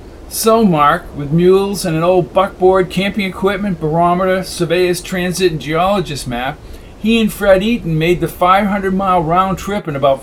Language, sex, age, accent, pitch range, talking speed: English, male, 50-69, American, 135-175 Hz, 160 wpm